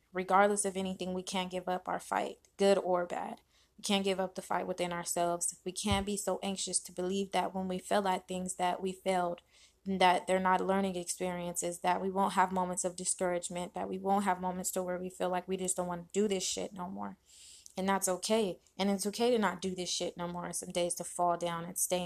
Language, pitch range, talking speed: English, 175-195 Hz, 240 wpm